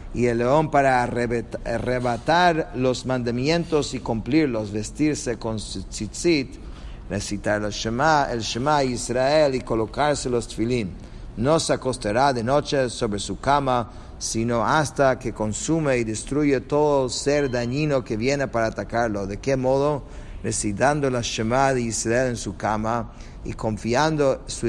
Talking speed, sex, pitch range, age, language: 140 wpm, male, 110-140 Hz, 50-69, English